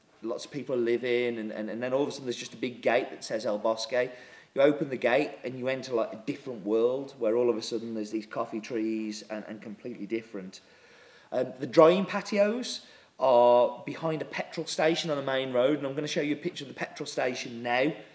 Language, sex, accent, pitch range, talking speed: English, male, British, 115-150 Hz, 240 wpm